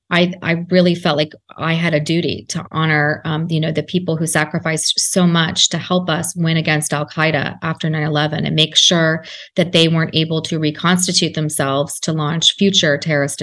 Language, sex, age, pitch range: English, female, 30-49, 155-180 Hz